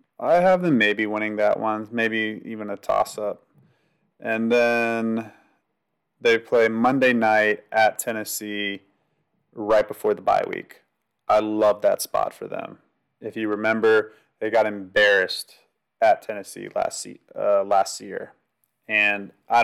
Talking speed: 140 wpm